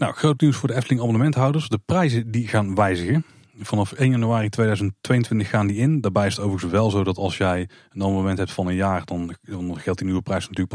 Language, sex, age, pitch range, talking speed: Dutch, male, 30-49, 90-115 Hz, 225 wpm